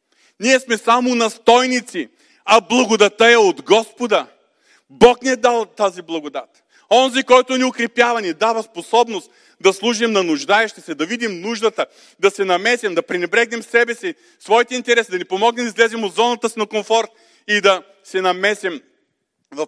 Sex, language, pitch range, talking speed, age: male, Bulgarian, 145-225 Hz, 165 wpm, 40-59